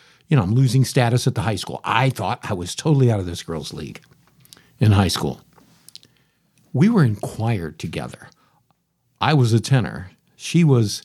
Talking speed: 180 wpm